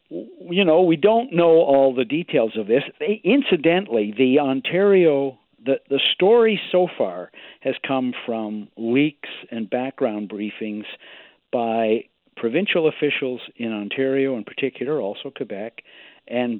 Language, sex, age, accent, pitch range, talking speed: English, male, 60-79, American, 110-160 Hz, 125 wpm